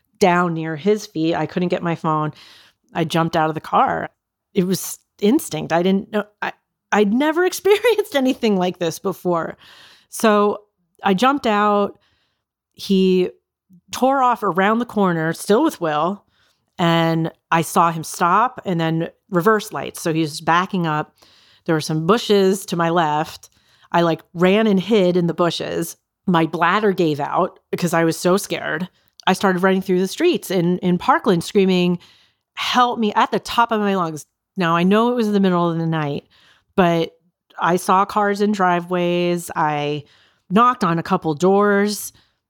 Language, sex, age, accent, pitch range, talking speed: English, female, 40-59, American, 160-205 Hz, 170 wpm